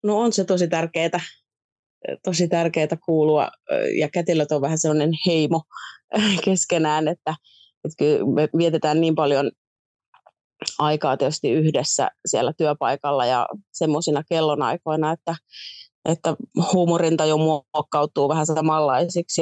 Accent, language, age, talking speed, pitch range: native, Finnish, 30-49, 110 wpm, 150-170 Hz